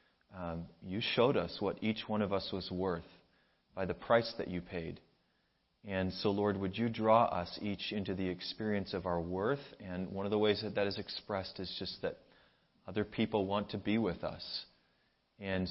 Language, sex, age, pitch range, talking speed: English, male, 30-49, 85-105 Hz, 195 wpm